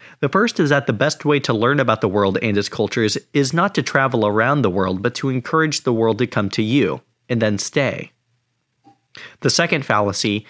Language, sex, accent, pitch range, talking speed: English, male, American, 100-140 Hz, 210 wpm